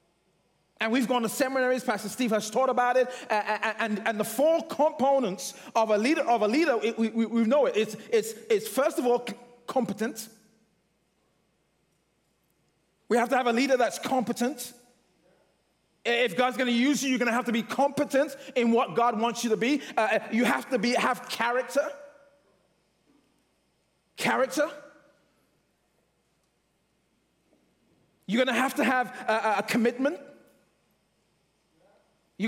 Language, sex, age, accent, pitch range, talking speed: English, male, 30-49, British, 215-260 Hz, 150 wpm